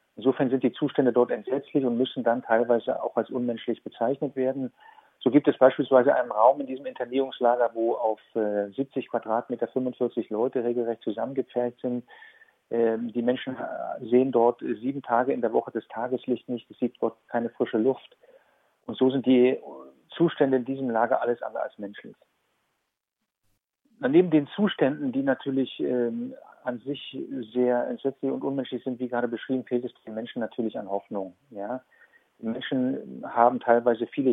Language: German